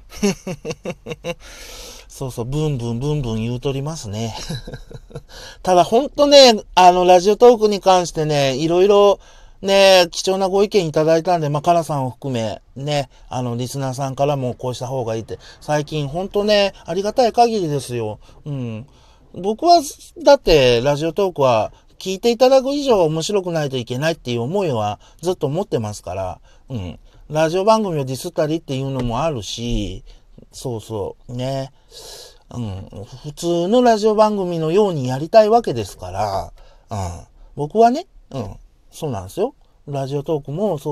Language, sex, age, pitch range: Japanese, male, 40-59, 125-190 Hz